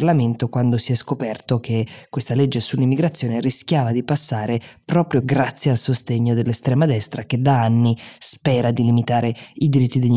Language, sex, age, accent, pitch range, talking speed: Italian, female, 20-39, native, 120-140 Hz, 155 wpm